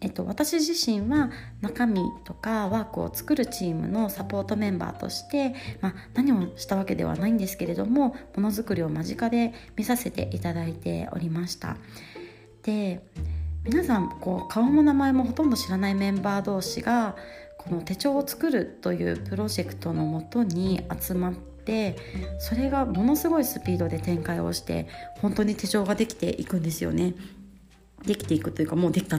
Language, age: Japanese, 30-49